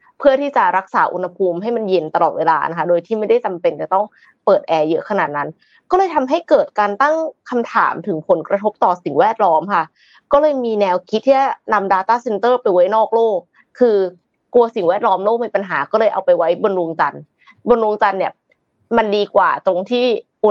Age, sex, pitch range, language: 20-39, female, 185-255 Hz, Thai